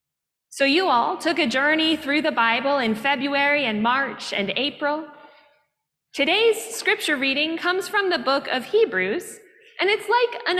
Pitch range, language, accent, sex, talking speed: 225-290 Hz, English, American, female, 160 wpm